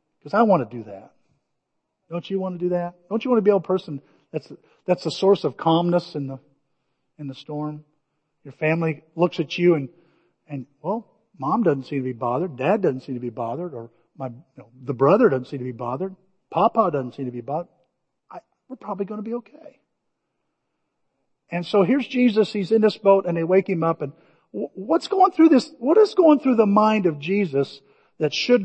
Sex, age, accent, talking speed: male, 50-69, American, 215 wpm